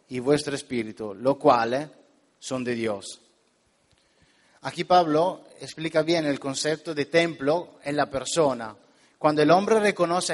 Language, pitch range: Spanish, 135-165 Hz